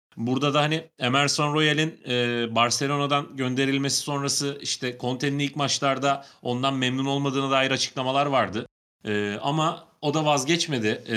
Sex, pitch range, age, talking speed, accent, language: male, 120-150 Hz, 30-49, 120 wpm, native, Turkish